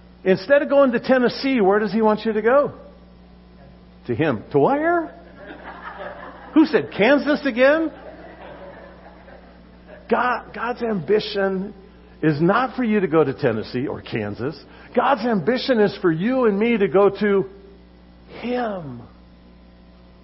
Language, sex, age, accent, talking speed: English, male, 50-69, American, 130 wpm